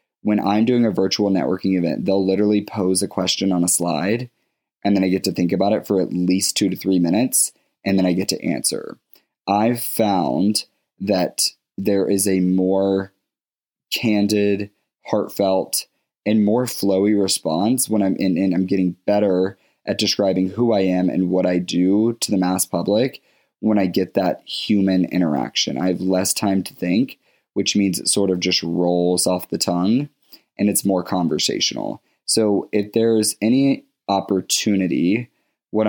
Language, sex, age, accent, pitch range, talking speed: English, male, 20-39, American, 90-105 Hz, 170 wpm